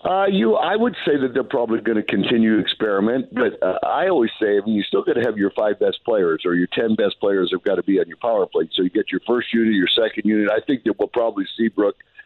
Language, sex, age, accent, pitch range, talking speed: English, male, 50-69, American, 95-120 Hz, 280 wpm